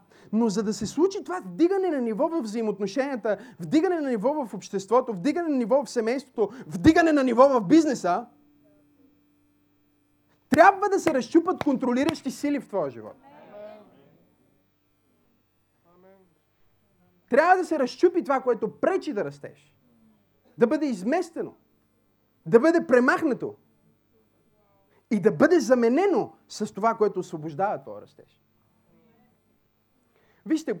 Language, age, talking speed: Bulgarian, 30-49, 120 wpm